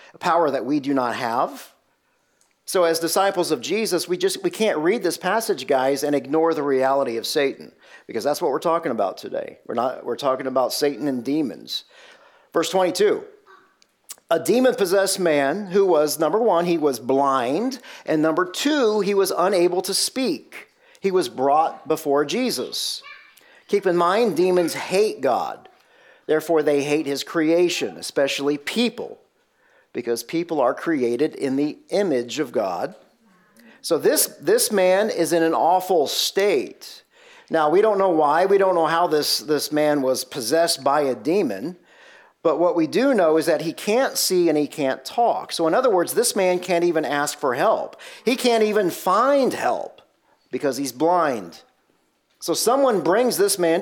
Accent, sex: American, male